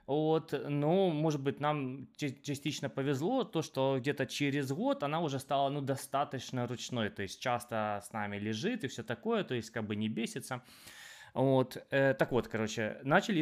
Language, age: Ukrainian, 20-39